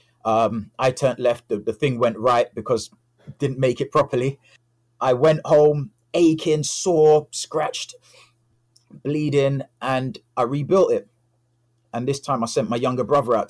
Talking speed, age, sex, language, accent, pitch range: 150 wpm, 30-49, male, English, British, 110-125 Hz